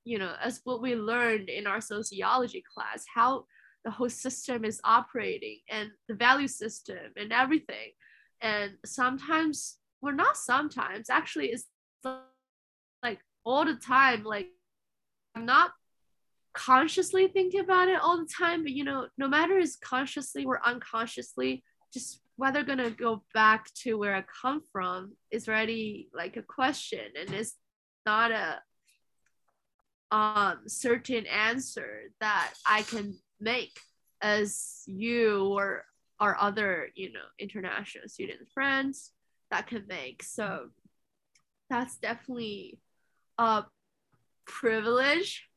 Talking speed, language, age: 130 wpm, English, 10-29